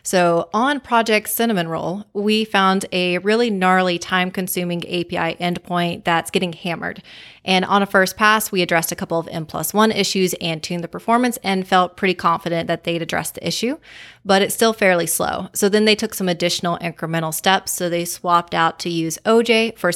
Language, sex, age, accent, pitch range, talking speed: English, female, 20-39, American, 170-195 Hz, 190 wpm